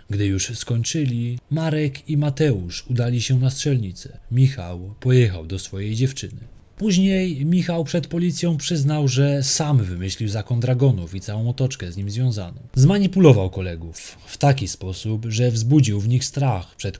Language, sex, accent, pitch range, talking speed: Polish, male, native, 100-140 Hz, 150 wpm